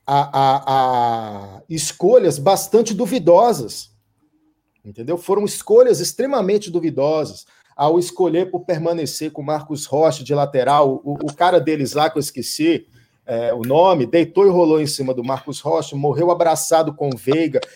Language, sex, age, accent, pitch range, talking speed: Portuguese, male, 50-69, Brazilian, 140-195 Hz, 150 wpm